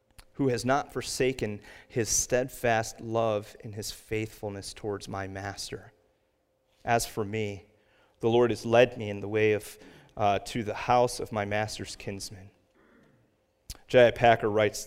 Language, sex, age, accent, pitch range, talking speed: English, male, 30-49, American, 105-135 Hz, 145 wpm